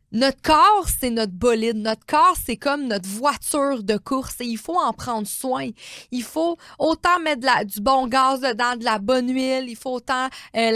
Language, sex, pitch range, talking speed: French, female, 220-275 Hz, 205 wpm